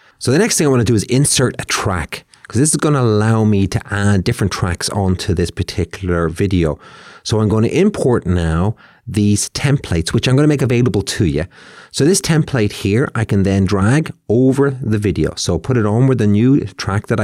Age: 30-49